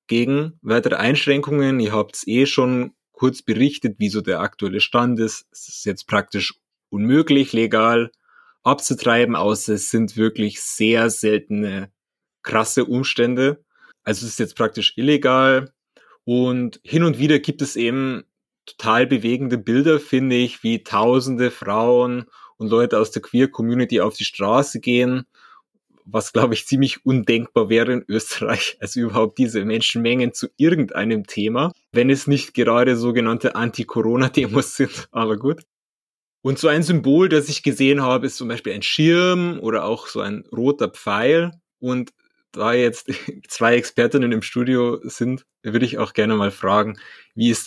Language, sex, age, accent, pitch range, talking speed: German, male, 30-49, German, 110-135 Hz, 150 wpm